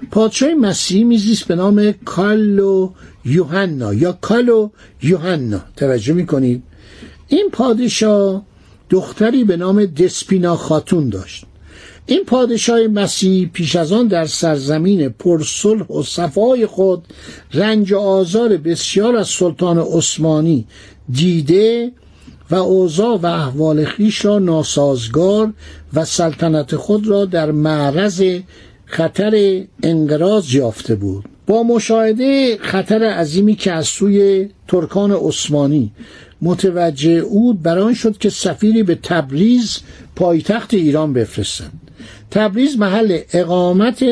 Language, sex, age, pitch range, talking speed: Persian, male, 60-79, 155-210 Hz, 110 wpm